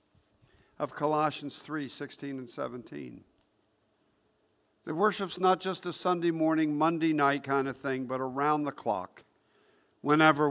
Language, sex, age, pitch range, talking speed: English, male, 50-69, 130-165 Hz, 130 wpm